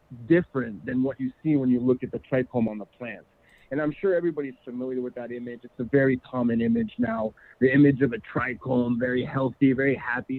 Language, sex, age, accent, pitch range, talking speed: English, male, 40-59, American, 125-150 Hz, 215 wpm